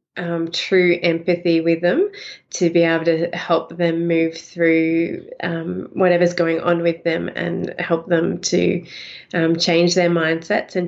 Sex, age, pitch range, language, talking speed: female, 20-39, 165-180 Hz, English, 150 wpm